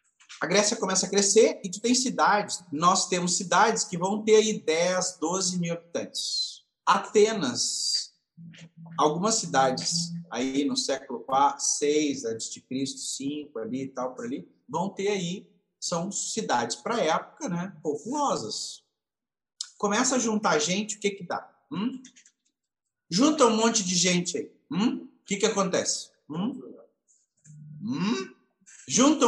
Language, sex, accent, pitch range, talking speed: Portuguese, male, Brazilian, 160-220 Hz, 140 wpm